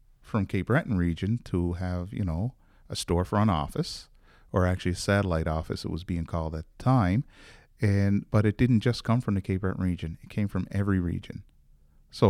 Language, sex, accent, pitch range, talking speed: English, male, American, 90-110 Hz, 195 wpm